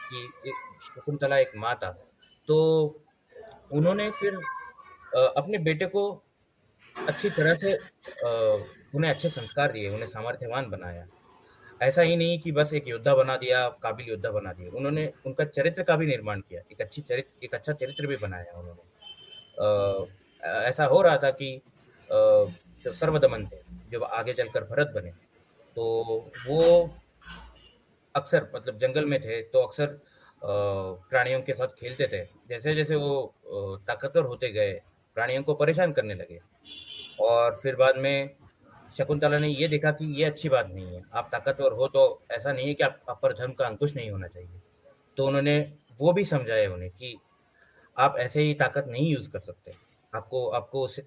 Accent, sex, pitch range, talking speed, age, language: native, male, 120-185 Hz, 160 wpm, 30-49, Hindi